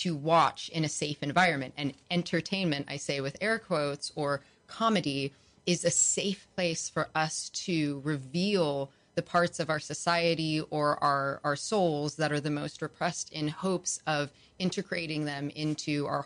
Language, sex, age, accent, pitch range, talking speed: English, female, 30-49, American, 145-175 Hz, 160 wpm